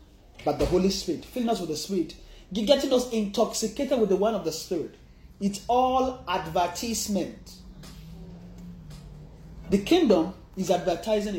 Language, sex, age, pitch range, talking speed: English, male, 30-49, 160-220 Hz, 130 wpm